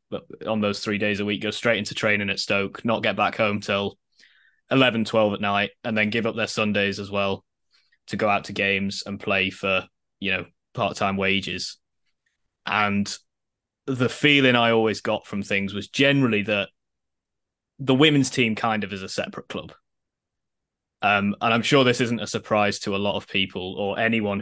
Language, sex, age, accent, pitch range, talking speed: English, male, 10-29, British, 100-115 Hz, 185 wpm